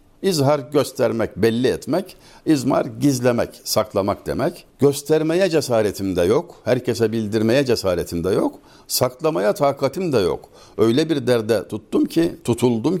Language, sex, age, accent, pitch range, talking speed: Turkish, male, 60-79, native, 105-145 Hz, 125 wpm